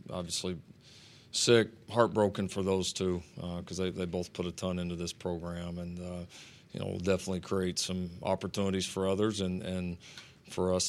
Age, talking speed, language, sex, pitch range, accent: 40-59, 175 wpm, English, male, 90-100 Hz, American